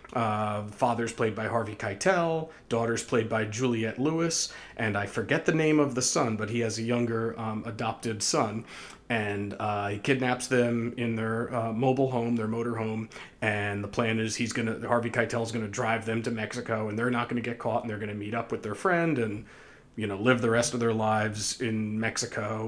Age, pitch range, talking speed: 30-49, 110-125 Hz, 210 wpm